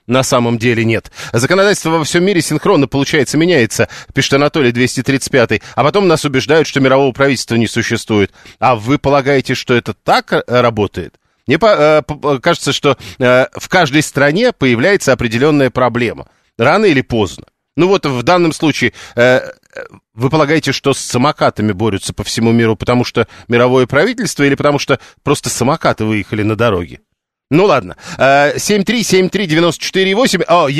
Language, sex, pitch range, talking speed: Russian, male, 120-155 Hz, 150 wpm